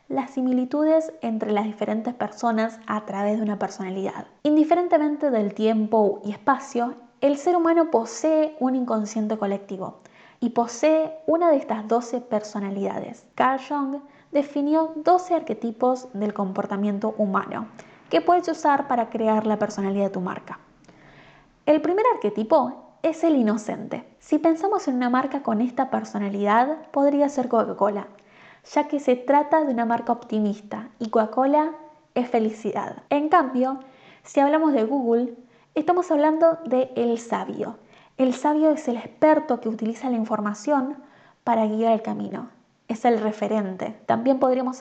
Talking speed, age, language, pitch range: 140 wpm, 10-29, Spanish, 215-290 Hz